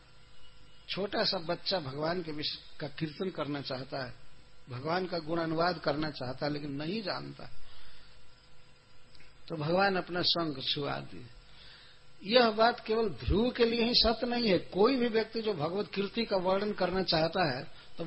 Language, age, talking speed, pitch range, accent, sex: English, 60-79, 165 wpm, 125-190 Hz, Indian, male